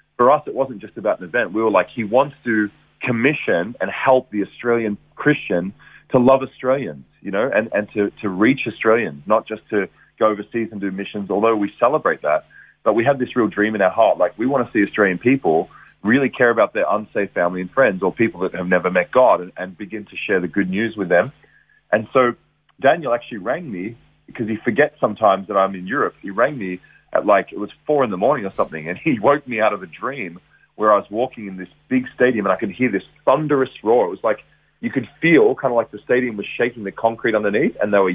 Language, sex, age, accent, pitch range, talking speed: English, male, 30-49, Australian, 100-125 Hz, 240 wpm